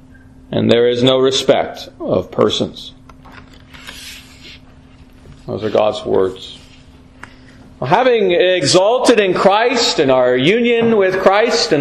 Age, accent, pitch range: 40-59, American, 150-220 Hz